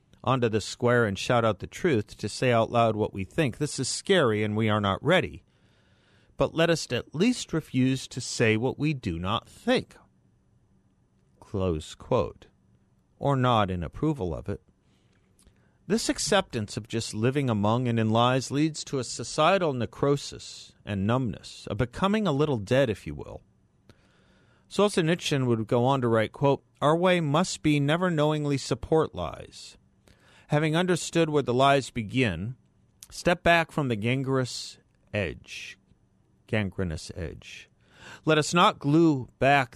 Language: English